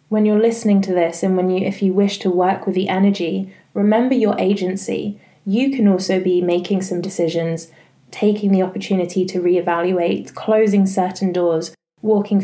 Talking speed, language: 170 wpm, English